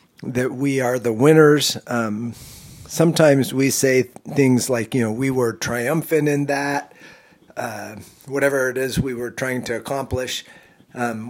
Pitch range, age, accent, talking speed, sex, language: 120-150 Hz, 50-69, American, 150 wpm, male, English